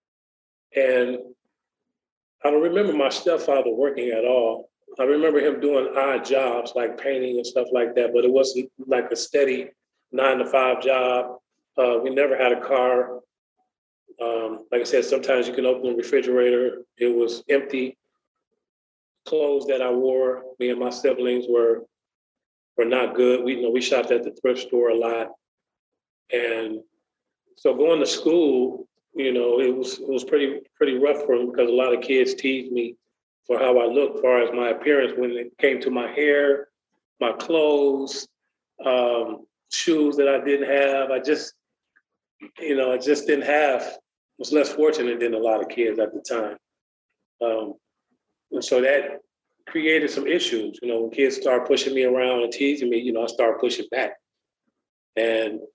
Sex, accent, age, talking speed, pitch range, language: male, American, 30-49, 175 wpm, 120-145 Hz, English